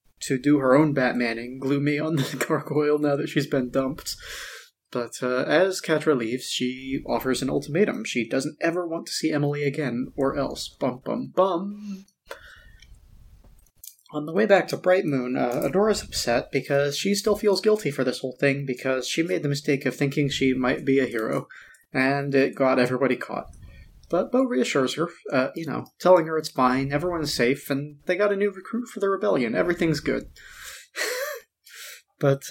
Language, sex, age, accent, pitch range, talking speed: English, male, 30-49, American, 130-165 Hz, 185 wpm